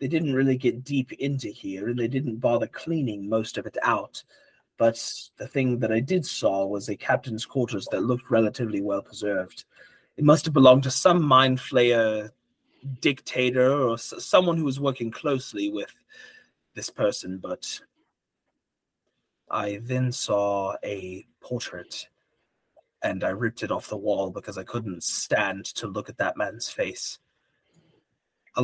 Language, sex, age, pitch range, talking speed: English, male, 30-49, 110-135 Hz, 155 wpm